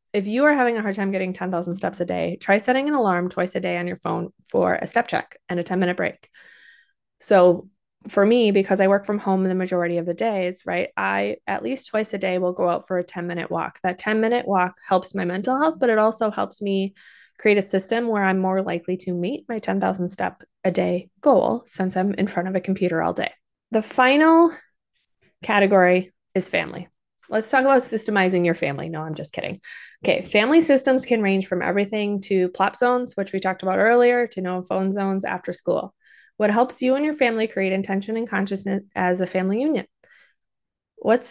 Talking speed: 215 wpm